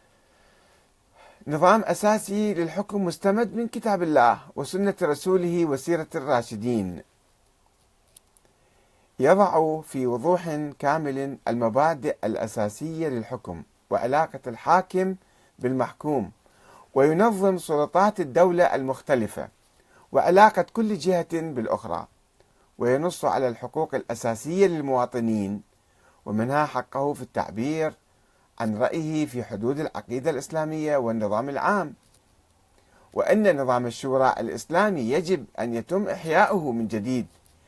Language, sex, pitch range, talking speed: Arabic, male, 110-165 Hz, 90 wpm